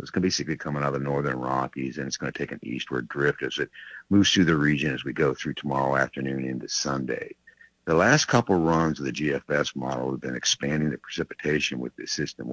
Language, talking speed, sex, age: English, 235 wpm, male, 50-69